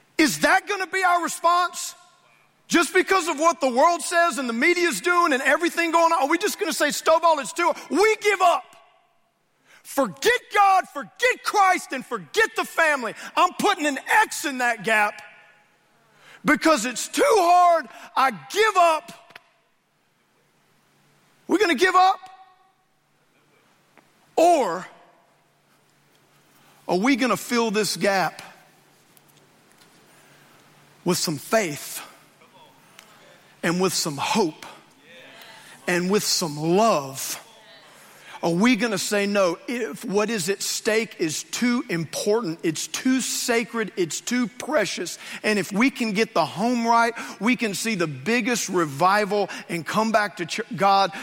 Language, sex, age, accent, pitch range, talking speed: English, male, 50-69, American, 200-335 Hz, 135 wpm